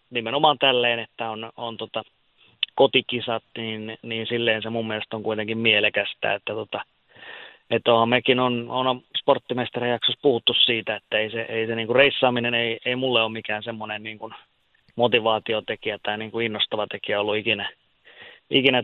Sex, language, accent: male, Finnish, native